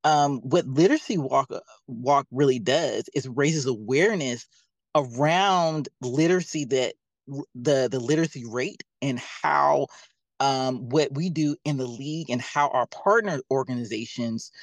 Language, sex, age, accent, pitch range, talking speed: English, male, 30-49, American, 120-150 Hz, 125 wpm